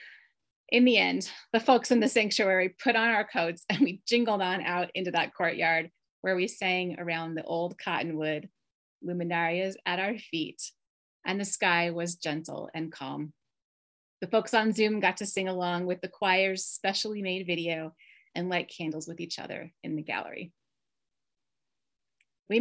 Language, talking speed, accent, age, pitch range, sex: English, 165 wpm, American, 30-49, 170-230 Hz, female